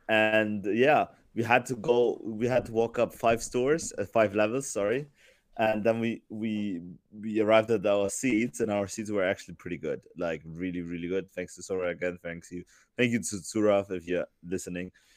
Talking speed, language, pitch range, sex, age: 200 wpm, English, 95-115 Hz, male, 20-39